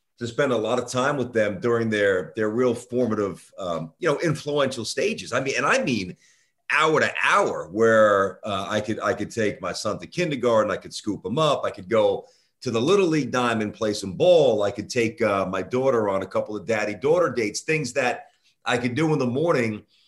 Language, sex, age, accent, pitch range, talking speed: English, male, 40-59, American, 110-135 Hz, 220 wpm